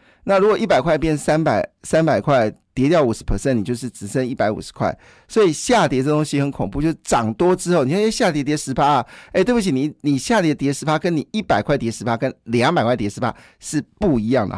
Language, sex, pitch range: Chinese, male, 115-150 Hz